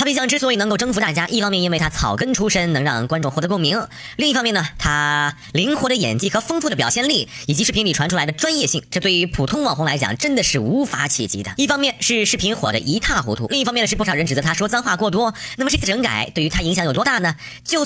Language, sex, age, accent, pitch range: Chinese, male, 20-39, native, 160-260 Hz